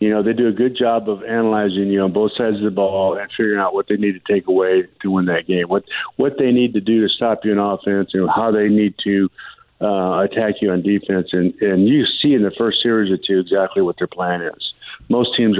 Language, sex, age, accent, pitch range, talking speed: English, male, 50-69, American, 100-125 Hz, 260 wpm